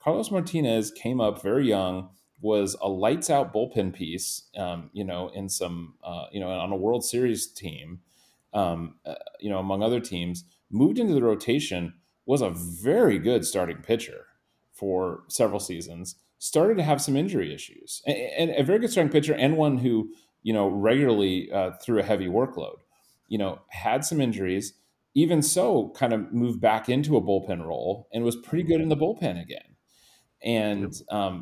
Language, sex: English, male